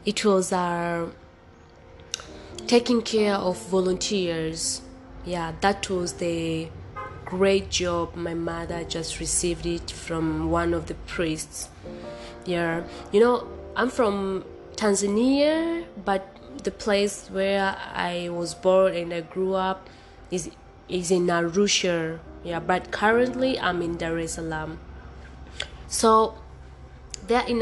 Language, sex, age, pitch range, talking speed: English, female, 20-39, 160-195 Hz, 120 wpm